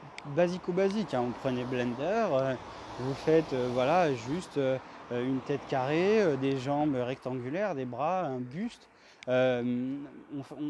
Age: 20-39